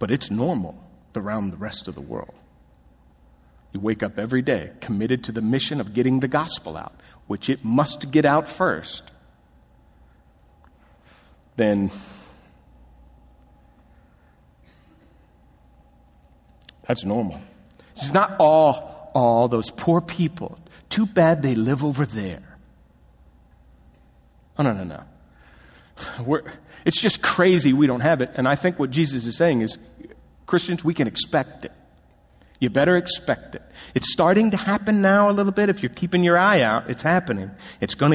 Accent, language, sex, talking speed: American, English, male, 145 wpm